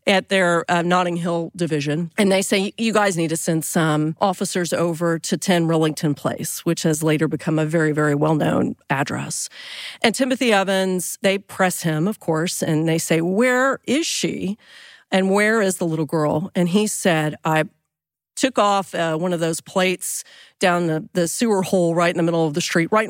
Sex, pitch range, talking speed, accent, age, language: female, 160-205 Hz, 190 wpm, American, 40-59, English